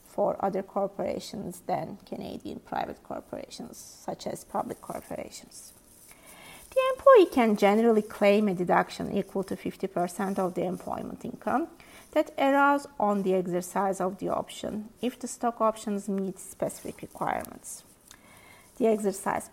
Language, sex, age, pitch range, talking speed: English, female, 30-49, 195-230 Hz, 130 wpm